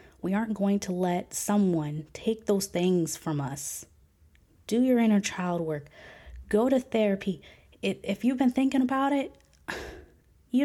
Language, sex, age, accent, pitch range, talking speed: English, female, 20-39, American, 170-230 Hz, 150 wpm